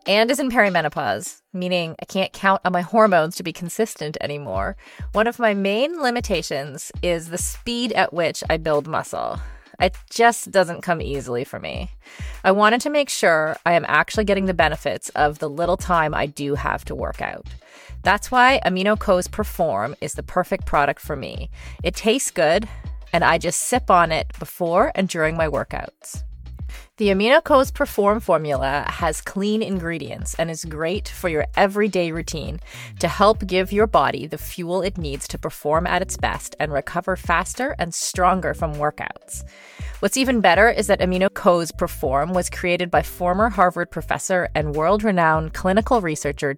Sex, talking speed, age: female, 170 wpm, 30-49